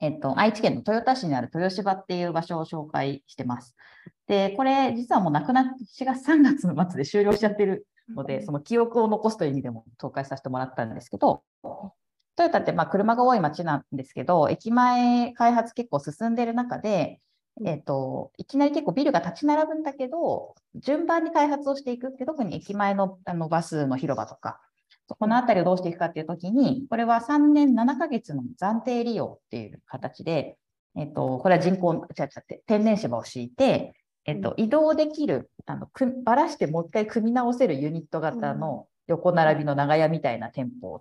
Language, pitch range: Japanese, 155-255 Hz